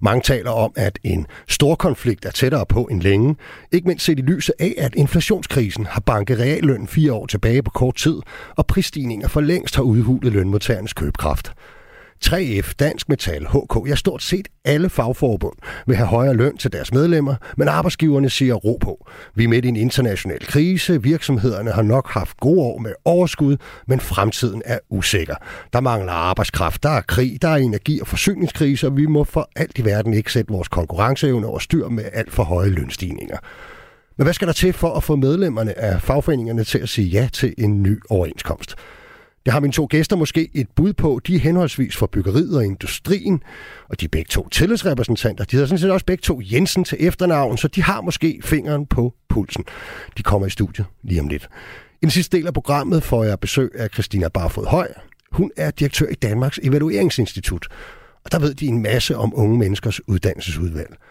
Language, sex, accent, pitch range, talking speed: Danish, male, native, 110-155 Hz, 195 wpm